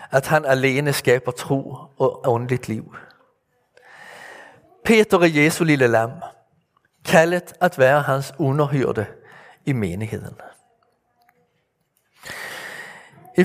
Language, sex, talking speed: Danish, male, 95 wpm